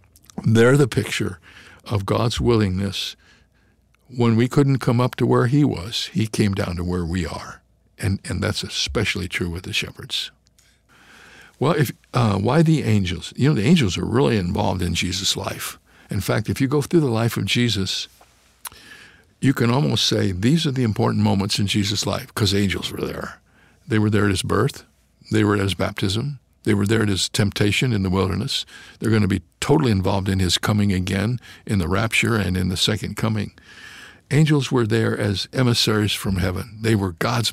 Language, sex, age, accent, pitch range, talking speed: English, male, 60-79, American, 100-120 Hz, 190 wpm